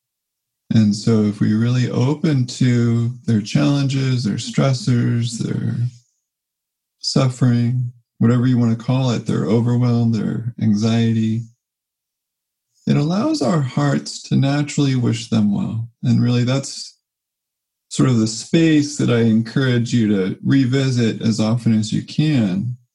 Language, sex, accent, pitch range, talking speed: English, male, American, 115-135 Hz, 130 wpm